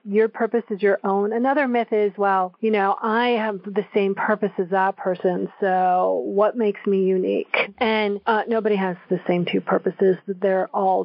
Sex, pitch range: female, 190-215 Hz